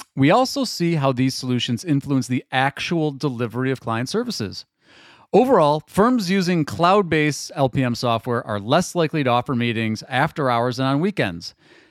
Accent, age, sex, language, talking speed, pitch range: American, 40-59, male, English, 150 wpm, 115-155 Hz